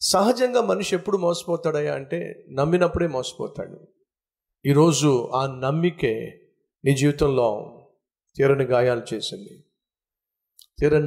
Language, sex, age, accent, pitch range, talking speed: Telugu, male, 50-69, native, 130-180 Hz, 85 wpm